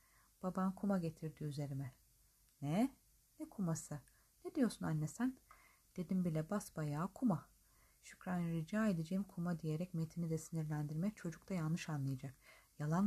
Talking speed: 130 wpm